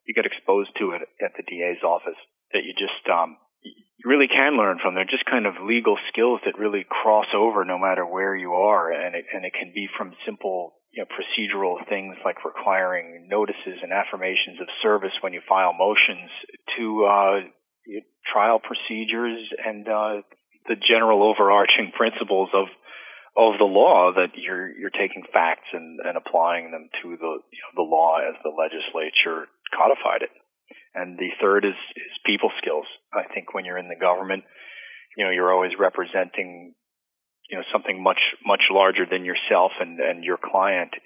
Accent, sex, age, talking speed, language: American, male, 40-59, 180 wpm, English